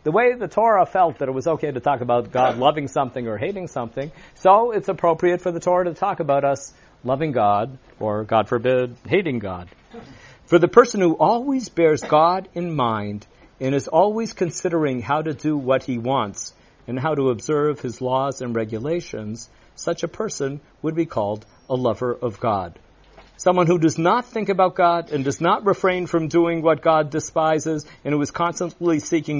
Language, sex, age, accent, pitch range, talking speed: English, male, 50-69, American, 125-180 Hz, 190 wpm